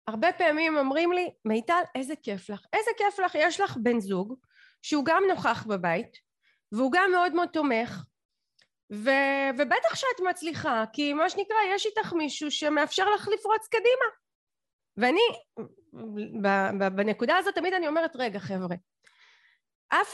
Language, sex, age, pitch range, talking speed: Hebrew, female, 30-49, 255-360 Hz, 140 wpm